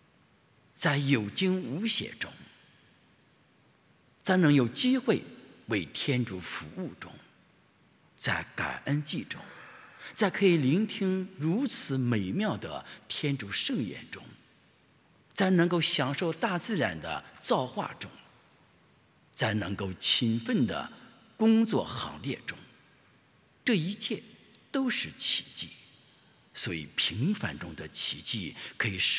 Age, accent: 50-69, Chinese